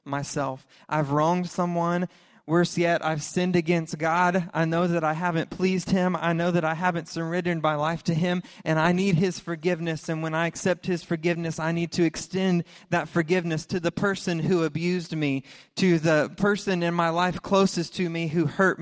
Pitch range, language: 155-175 Hz, English